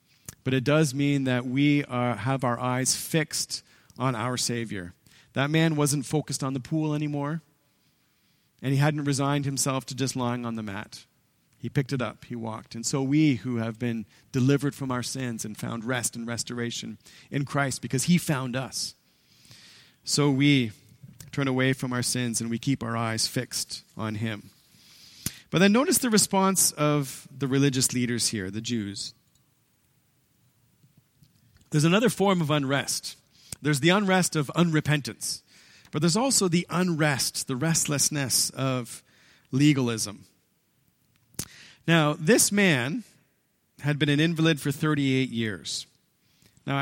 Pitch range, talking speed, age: 125-150 Hz, 150 wpm, 40-59